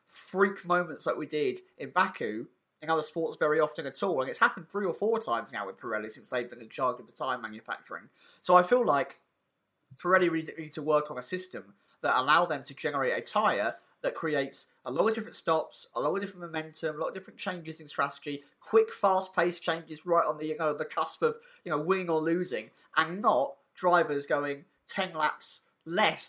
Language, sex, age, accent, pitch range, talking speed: English, male, 30-49, British, 150-195 Hz, 215 wpm